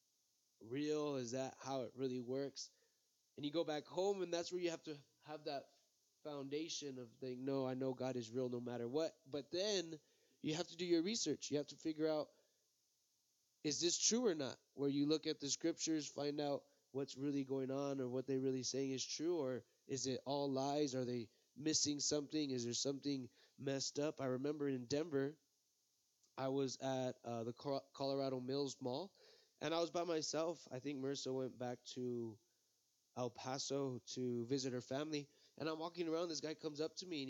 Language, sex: English, male